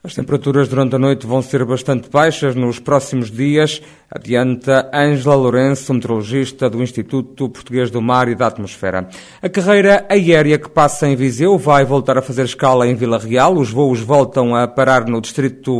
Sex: male